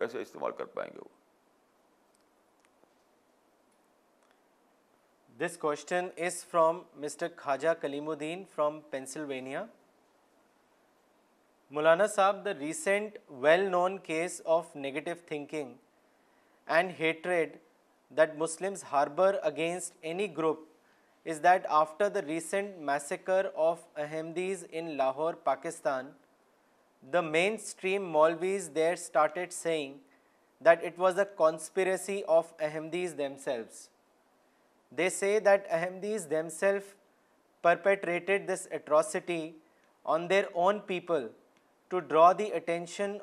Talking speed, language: 95 wpm, Urdu